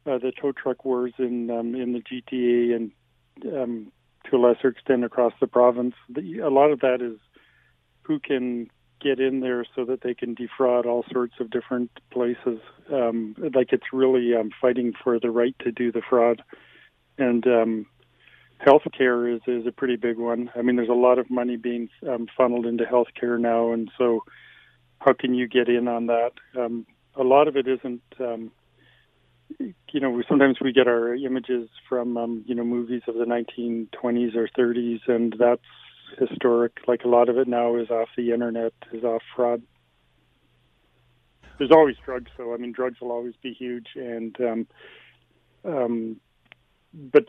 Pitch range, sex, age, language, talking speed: 120-125 Hz, male, 40-59, English, 175 wpm